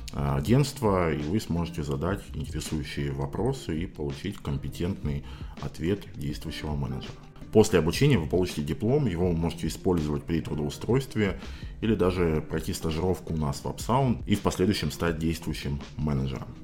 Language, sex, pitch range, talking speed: Russian, male, 75-90 Hz, 135 wpm